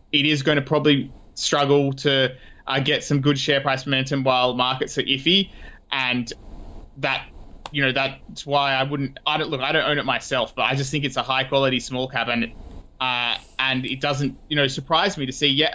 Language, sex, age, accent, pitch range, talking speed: English, male, 20-39, Australian, 125-145 Hz, 210 wpm